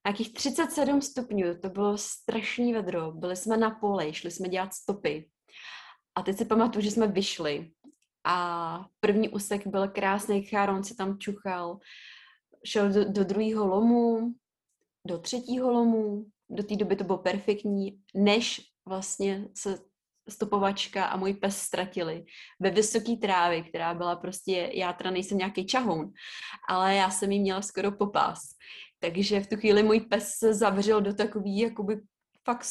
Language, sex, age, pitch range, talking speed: Czech, female, 20-39, 190-220 Hz, 150 wpm